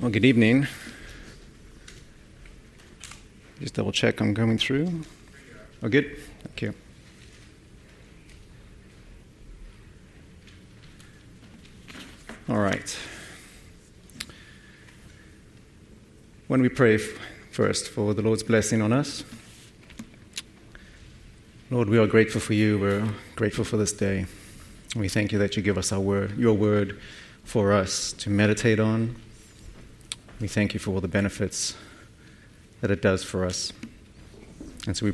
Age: 30-49